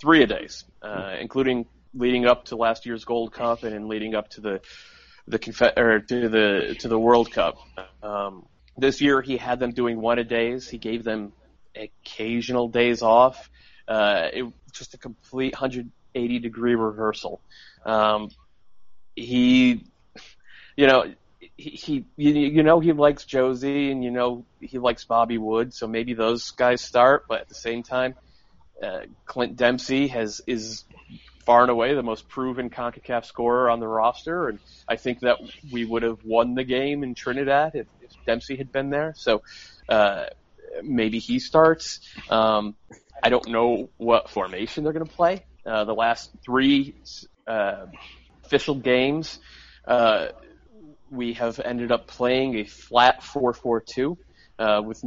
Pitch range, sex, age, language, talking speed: 115-135 Hz, male, 30-49, English, 160 wpm